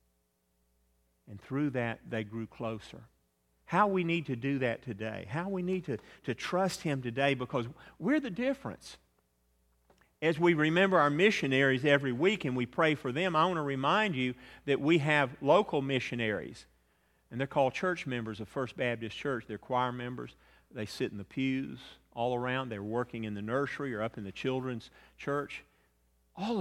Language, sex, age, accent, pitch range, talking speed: English, male, 40-59, American, 95-155 Hz, 175 wpm